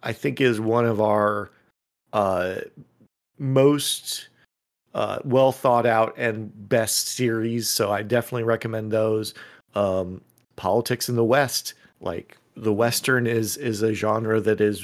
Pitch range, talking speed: 105-125 Hz, 140 wpm